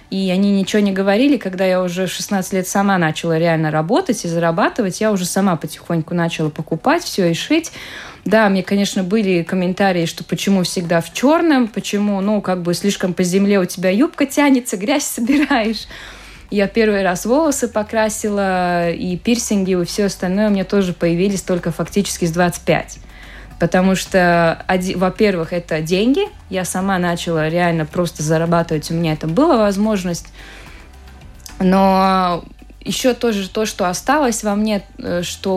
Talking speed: 155 wpm